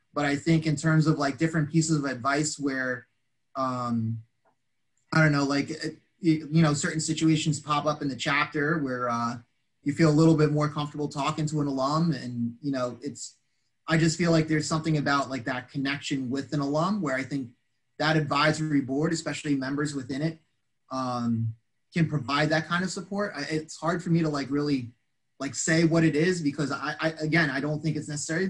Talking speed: 200 wpm